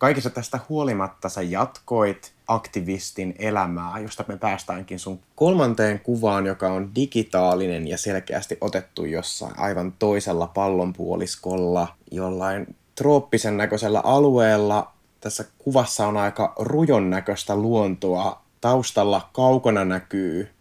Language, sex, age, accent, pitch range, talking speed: Finnish, male, 20-39, native, 95-115 Hz, 105 wpm